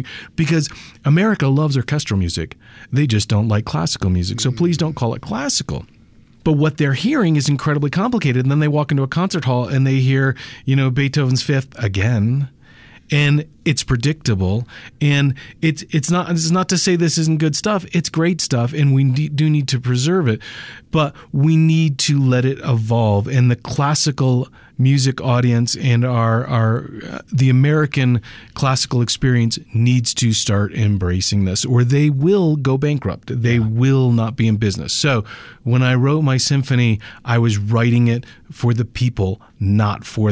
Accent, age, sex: American, 40-59, male